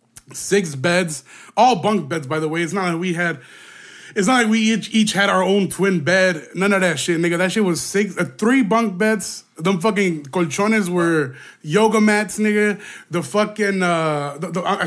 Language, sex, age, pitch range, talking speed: English, male, 20-39, 170-205 Hz, 200 wpm